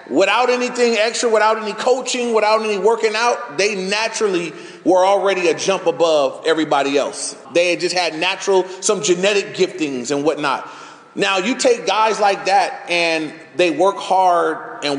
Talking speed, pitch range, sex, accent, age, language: 160 wpm, 155-205 Hz, male, American, 30-49, English